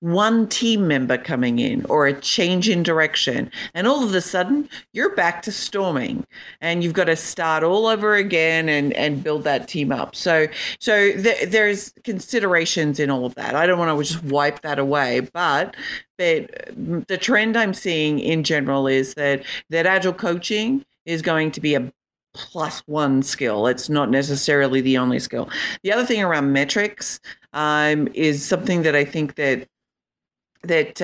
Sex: female